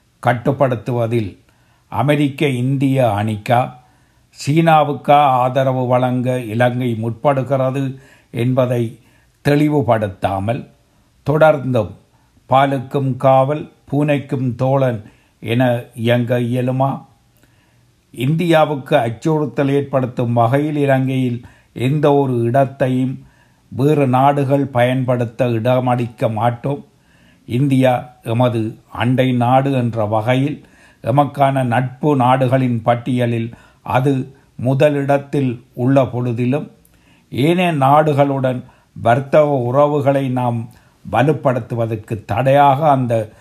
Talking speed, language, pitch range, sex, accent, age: 75 wpm, Tamil, 120-140 Hz, male, native, 60-79